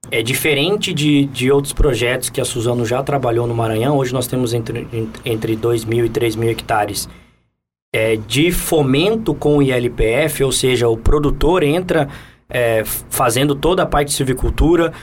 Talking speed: 165 wpm